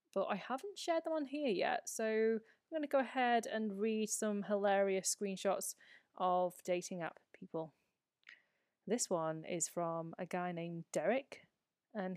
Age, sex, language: 30-49, female, English